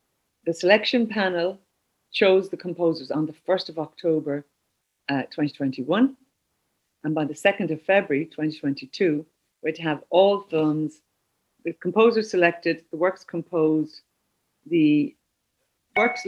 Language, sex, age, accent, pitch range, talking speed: English, female, 40-59, Irish, 155-190 Hz, 125 wpm